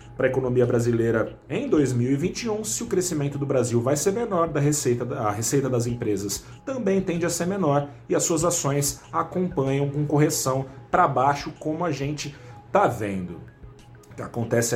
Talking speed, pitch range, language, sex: 165 wpm, 115-150 Hz, Portuguese, male